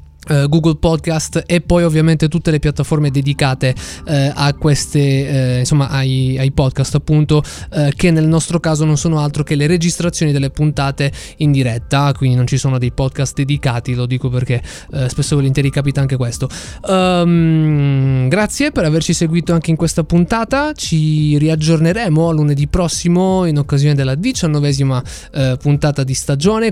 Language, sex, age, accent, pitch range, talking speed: Italian, male, 20-39, native, 145-175 Hz, 155 wpm